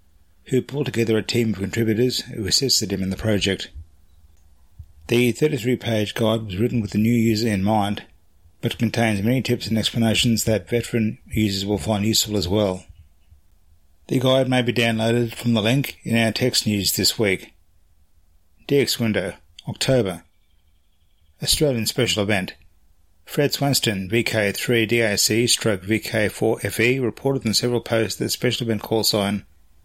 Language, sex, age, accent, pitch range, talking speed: English, male, 30-49, Australian, 90-120 Hz, 140 wpm